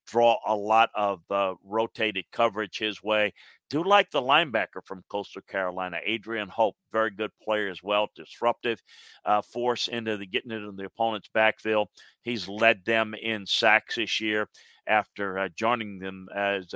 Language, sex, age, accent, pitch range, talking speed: English, male, 50-69, American, 100-120 Hz, 160 wpm